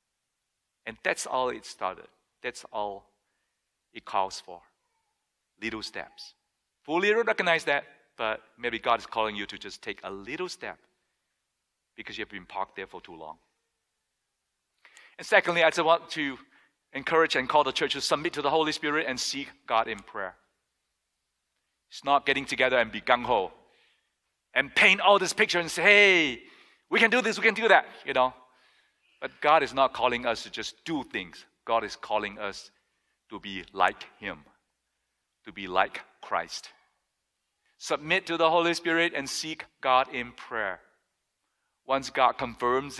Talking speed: 165 wpm